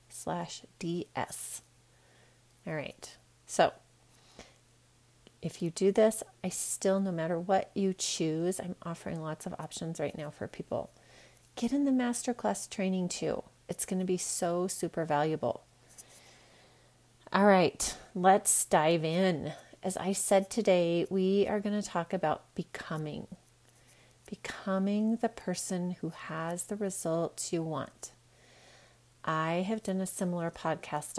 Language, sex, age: English, female, 30-49